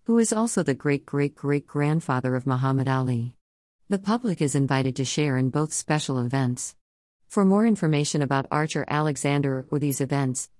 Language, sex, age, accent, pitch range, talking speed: English, female, 50-69, American, 130-155 Hz, 155 wpm